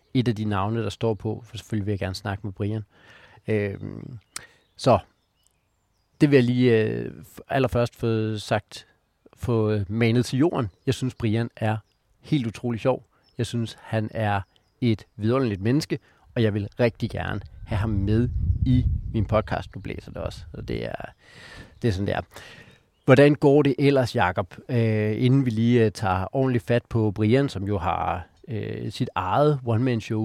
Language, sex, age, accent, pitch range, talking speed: Danish, male, 40-59, native, 105-130 Hz, 160 wpm